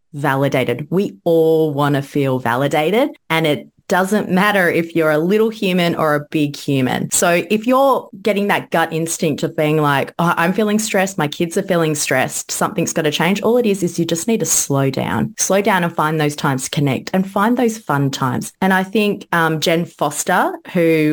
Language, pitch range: English, 150-195 Hz